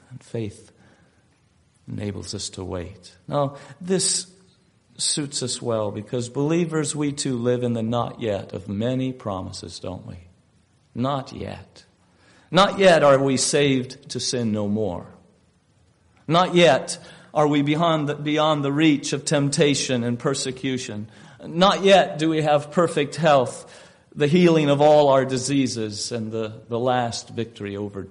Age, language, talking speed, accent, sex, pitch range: 50-69, English, 145 wpm, American, male, 110-150 Hz